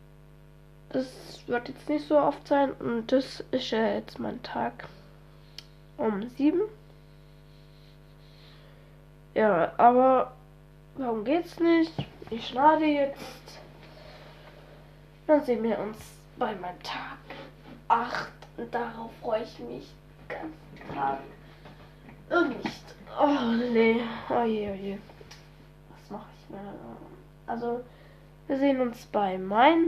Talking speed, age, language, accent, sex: 105 wpm, 10-29, German, German, female